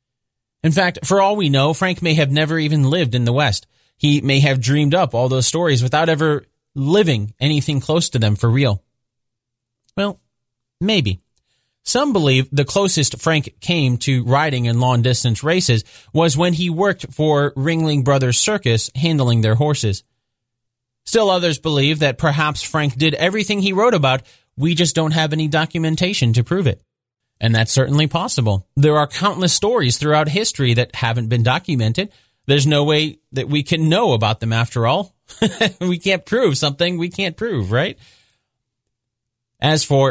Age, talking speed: 30-49, 165 wpm